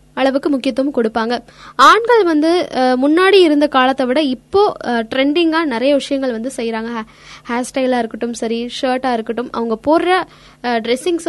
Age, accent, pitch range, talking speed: 20-39, native, 245-320 Hz, 130 wpm